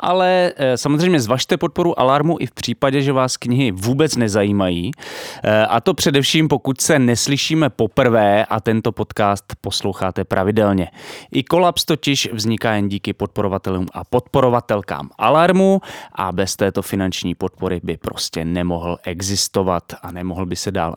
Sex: male